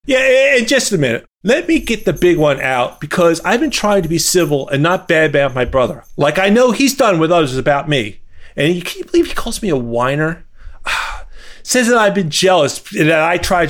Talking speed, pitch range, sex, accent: 230 wpm, 150-240 Hz, male, American